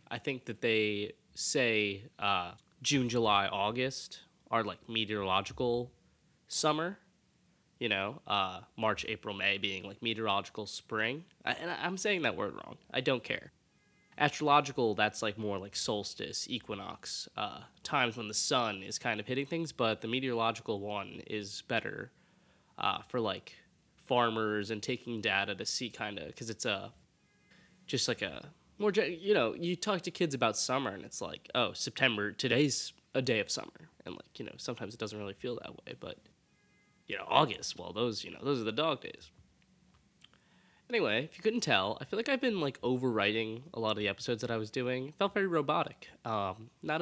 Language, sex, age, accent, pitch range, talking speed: English, male, 20-39, American, 110-155 Hz, 180 wpm